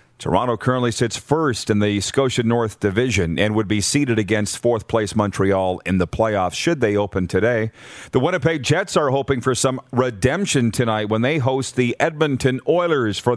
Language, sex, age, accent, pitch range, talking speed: English, male, 40-59, American, 110-135 Hz, 180 wpm